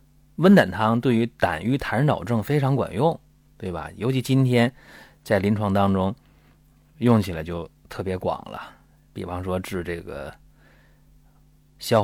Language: Chinese